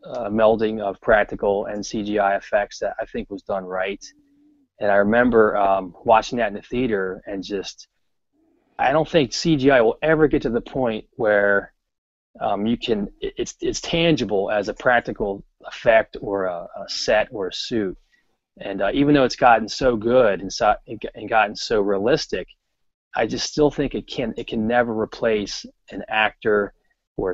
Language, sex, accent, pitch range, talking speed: English, male, American, 100-140 Hz, 180 wpm